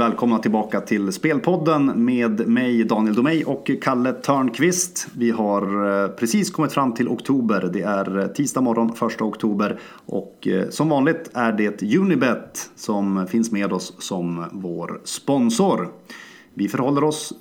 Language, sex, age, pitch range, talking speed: English, male, 30-49, 100-125 Hz, 140 wpm